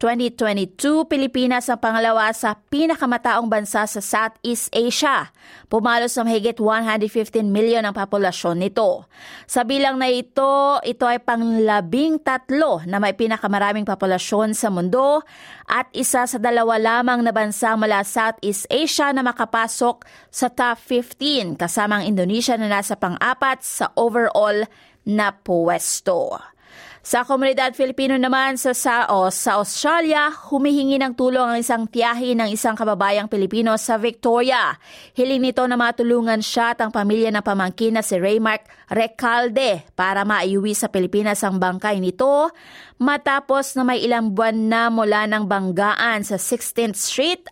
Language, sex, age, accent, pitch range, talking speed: Filipino, female, 20-39, native, 210-255 Hz, 140 wpm